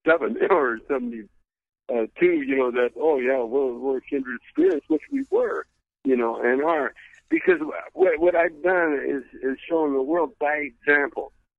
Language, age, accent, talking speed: English, 60-79, American, 160 wpm